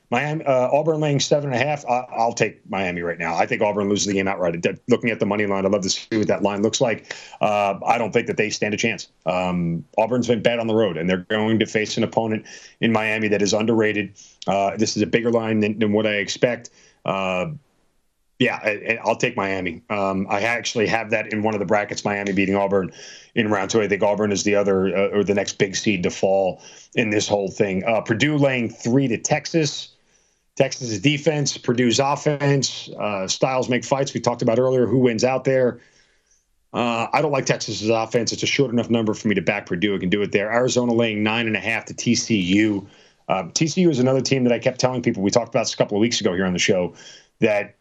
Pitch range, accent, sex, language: 100-130 Hz, American, male, English